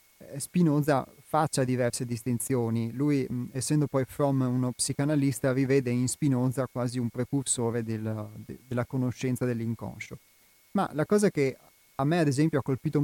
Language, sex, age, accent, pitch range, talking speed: Italian, male, 30-49, native, 120-145 Hz, 135 wpm